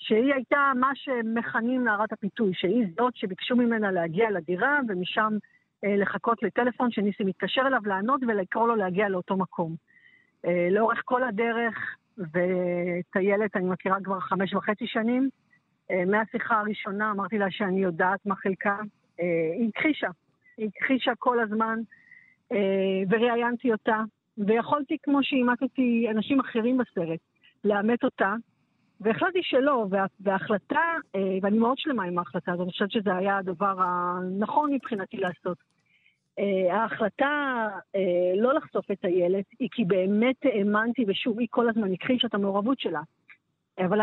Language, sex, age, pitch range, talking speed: Hebrew, female, 50-69, 195-240 Hz, 135 wpm